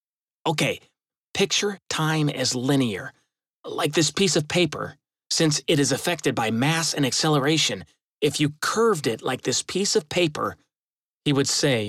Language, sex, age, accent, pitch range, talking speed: English, male, 30-49, American, 125-160 Hz, 150 wpm